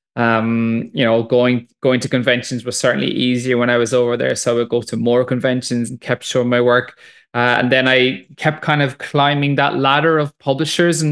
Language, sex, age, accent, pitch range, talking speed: English, male, 20-39, Irish, 120-135 Hz, 215 wpm